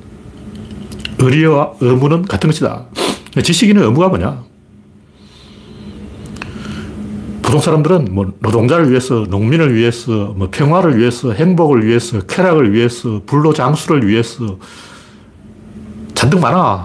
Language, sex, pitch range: Korean, male, 105-155 Hz